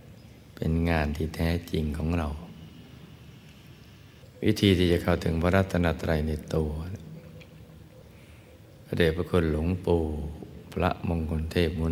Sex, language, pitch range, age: male, Thai, 80-90 Hz, 60-79